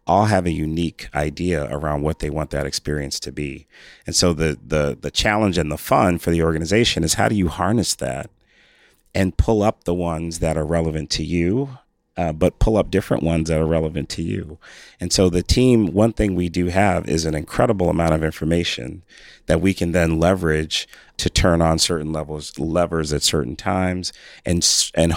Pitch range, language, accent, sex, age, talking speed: 80-95 Hz, English, American, male, 30-49, 200 wpm